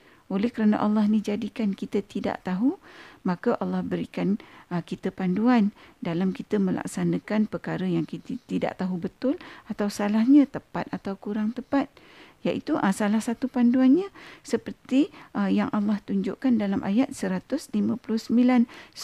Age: 50-69